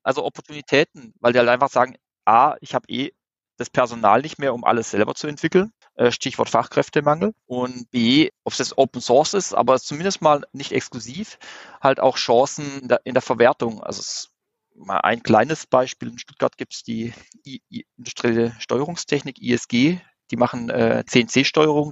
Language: German